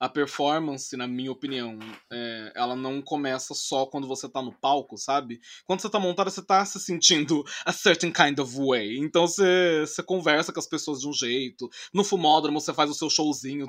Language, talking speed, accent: Portuguese, 195 wpm, Brazilian